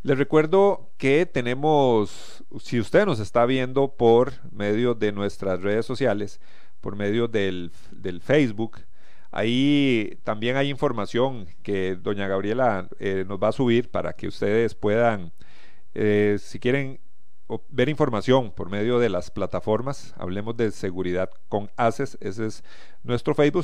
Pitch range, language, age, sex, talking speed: 105-150 Hz, Spanish, 40-59, male, 140 wpm